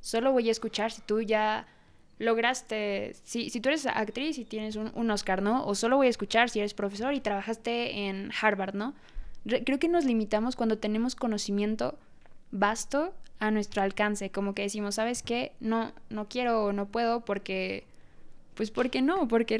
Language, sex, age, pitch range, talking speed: Spanish, female, 20-39, 205-235 Hz, 185 wpm